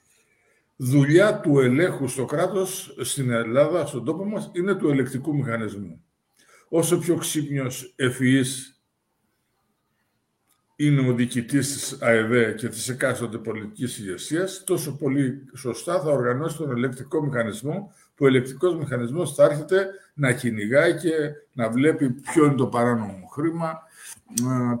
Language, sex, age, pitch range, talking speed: Greek, male, 50-69, 120-155 Hz, 130 wpm